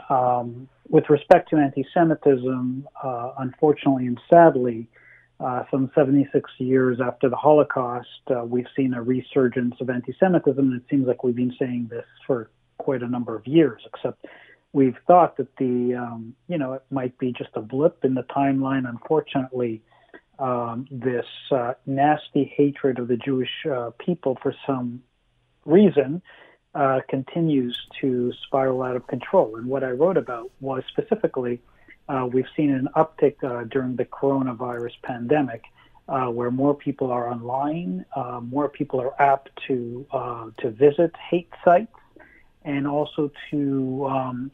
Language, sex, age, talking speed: English, male, 40-59, 155 wpm